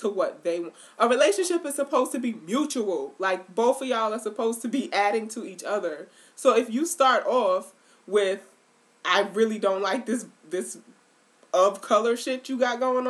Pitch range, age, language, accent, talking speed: 185-260 Hz, 20-39, English, American, 190 wpm